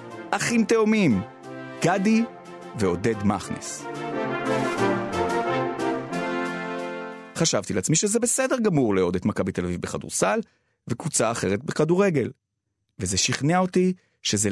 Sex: male